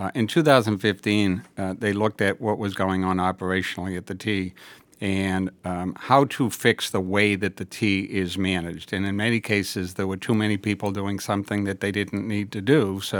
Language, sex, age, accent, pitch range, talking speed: English, male, 60-79, American, 95-110 Hz, 205 wpm